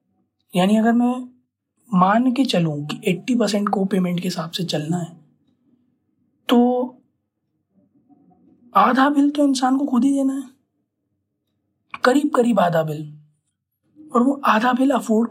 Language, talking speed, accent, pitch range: Hindi, 135 wpm, native, 175-245 Hz